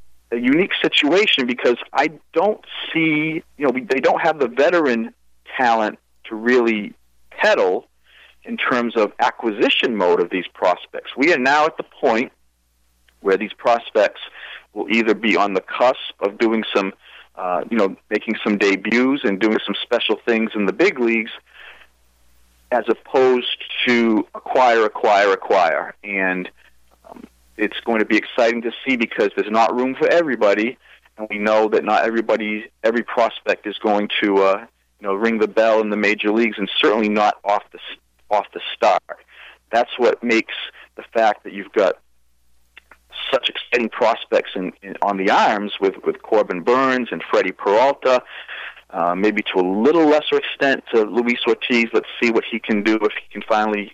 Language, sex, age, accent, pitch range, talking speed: English, male, 40-59, American, 95-120 Hz, 165 wpm